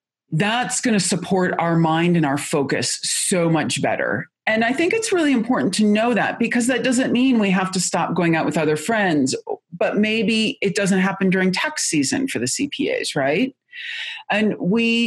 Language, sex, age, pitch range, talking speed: English, female, 40-59, 155-230 Hz, 190 wpm